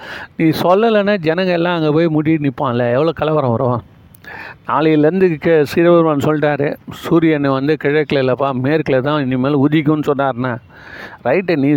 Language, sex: Tamil, male